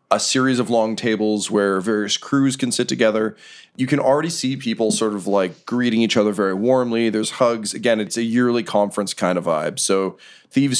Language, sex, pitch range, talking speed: English, male, 100-125 Hz, 200 wpm